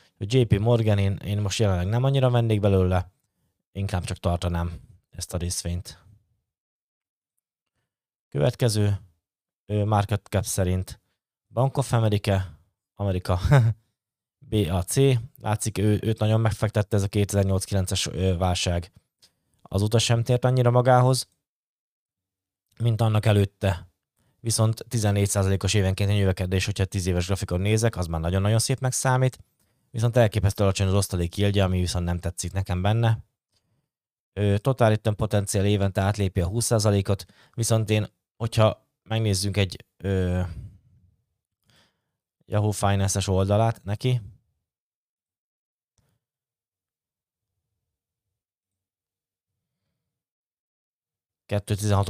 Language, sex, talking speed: Hungarian, male, 100 wpm